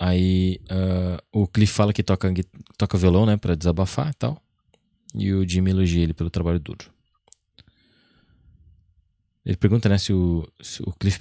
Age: 20-39